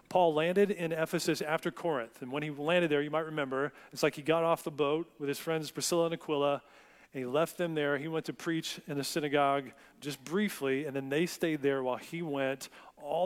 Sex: male